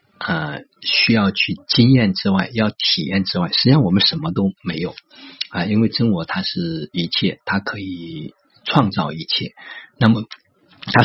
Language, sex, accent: Chinese, male, native